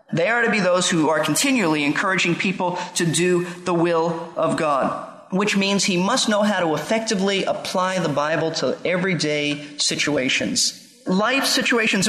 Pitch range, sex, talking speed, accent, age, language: 165-230 Hz, male, 160 wpm, American, 40-59, English